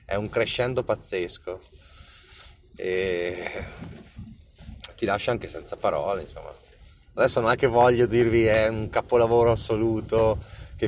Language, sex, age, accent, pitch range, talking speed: Italian, male, 30-49, native, 90-110 Hz, 120 wpm